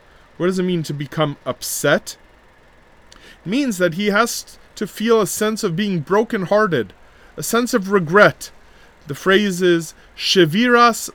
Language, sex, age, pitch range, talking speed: English, male, 30-49, 160-215 Hz, 145 wpm